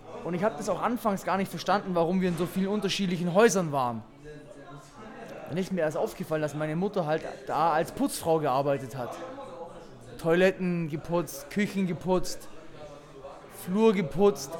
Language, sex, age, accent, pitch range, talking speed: German, male, 20-39, German, 160-195 Hz, 150 wpm